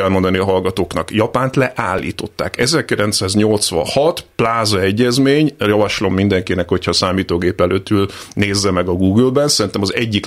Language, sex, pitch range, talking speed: Hungarian, male, 95-130 Hz, 115 wpm